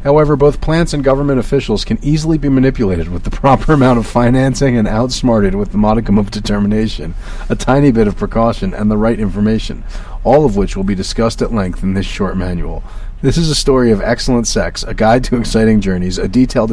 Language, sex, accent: English, male, American